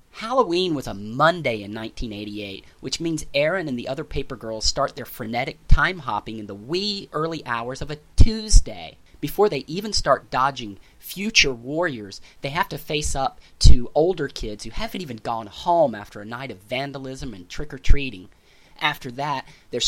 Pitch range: 115-165 Hz